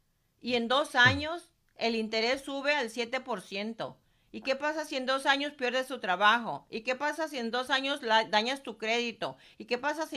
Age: 50-69